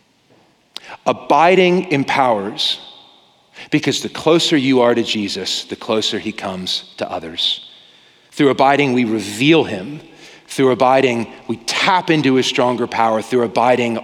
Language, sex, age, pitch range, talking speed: English, male, 40-59, 110-140 Hz, 130 wpm